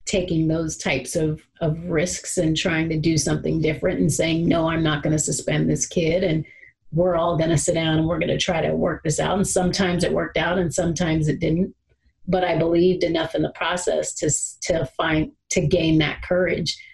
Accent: American